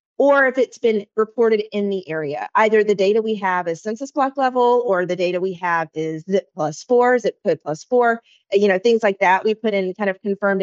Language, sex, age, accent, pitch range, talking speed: English, female, 30-49, American, 180-225 Hz, 230 wpm